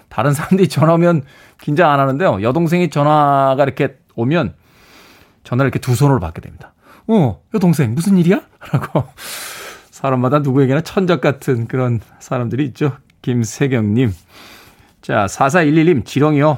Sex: male